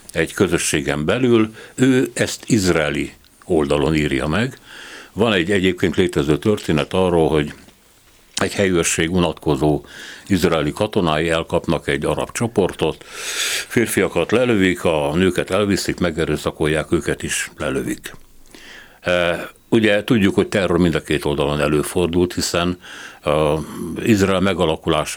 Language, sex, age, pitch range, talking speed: Hungarian, male, 60-79, 80-100 Hz, 110 wpm